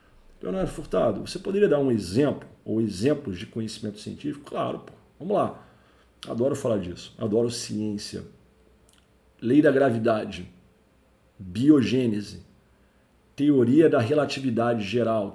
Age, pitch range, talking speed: 50-69, 110-145 Hz, 115 wpm